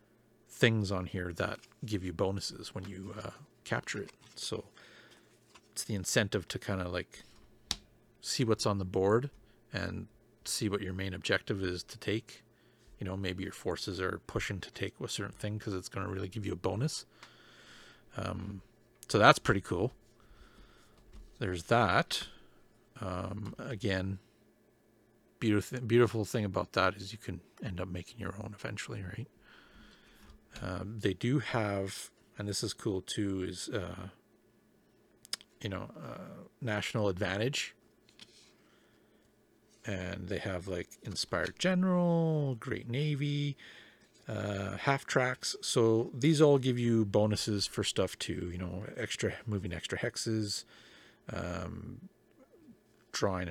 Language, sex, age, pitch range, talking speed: English, male, 40-59, 95-115 Hz, 140 wpm